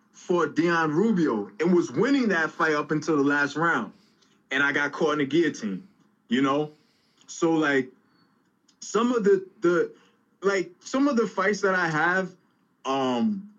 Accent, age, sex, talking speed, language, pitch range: American, 20-39, male, 165 wpm, English, 145-195 Hz